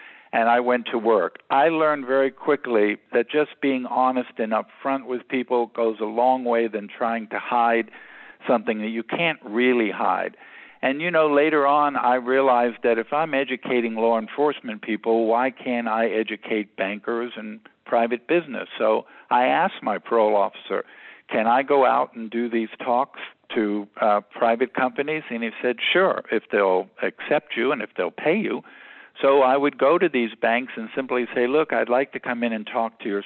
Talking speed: 190 wpm